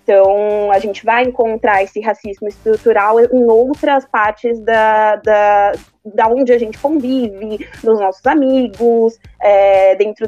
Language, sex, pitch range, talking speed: Portuguese, female, 205-255 Hz, 135 wpm